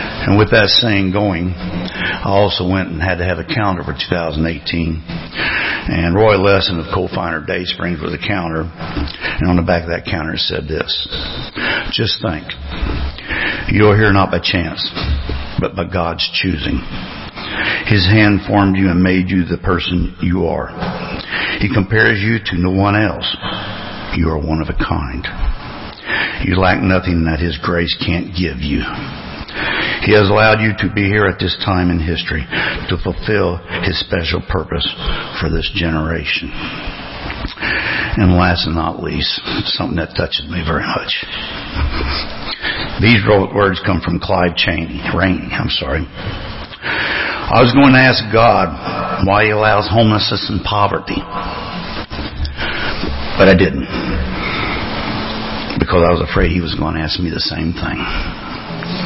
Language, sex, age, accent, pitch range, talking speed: English, male, 50-69, American, 85-100 Hz, 145 wpm